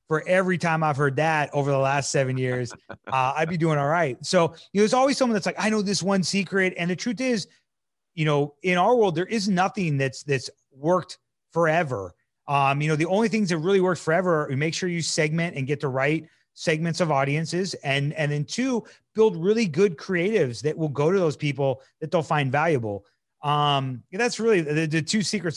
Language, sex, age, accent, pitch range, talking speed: English, male, 30-49, American, 145-185 Hz, 220 wpm